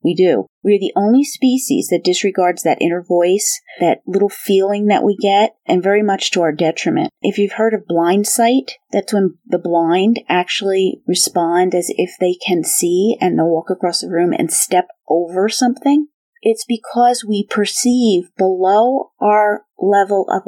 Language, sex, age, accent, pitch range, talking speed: English, female, 40-59, American, 190-250 Hz, 165 wpm